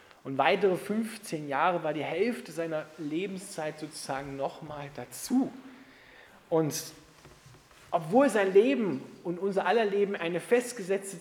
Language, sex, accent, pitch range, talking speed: German, male, German, 145-195 Hz, 120 wpm